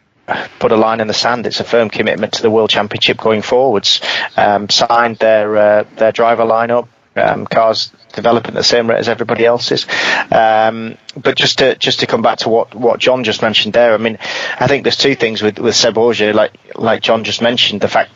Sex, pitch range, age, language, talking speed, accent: male, 110-125 Hz, 30-49, English, 210 wpm, British